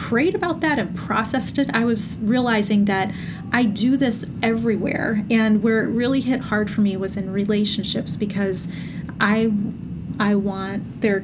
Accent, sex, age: American, female, 30-49